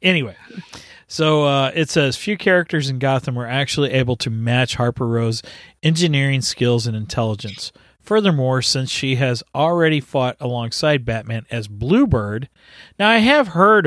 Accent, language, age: American, English, 40-59